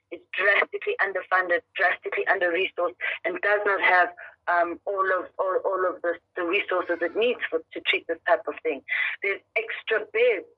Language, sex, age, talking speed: English, female, 30-49, 170 wpm